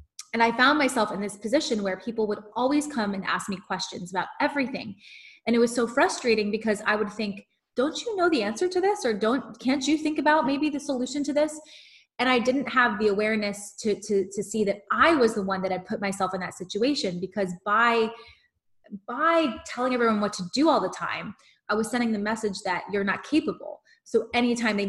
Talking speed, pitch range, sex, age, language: 215 wpm, 200-250 Hz, female, 20-39, English